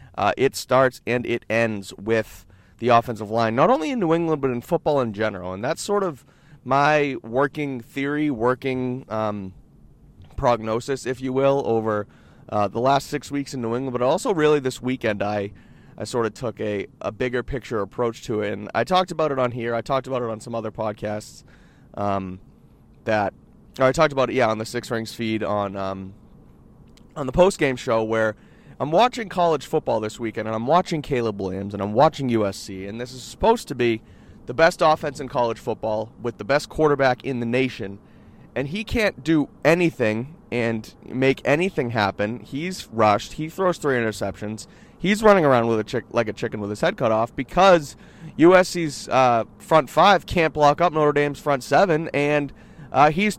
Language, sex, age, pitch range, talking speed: English, male, 30-49, 110-145 Hz, 195 wpm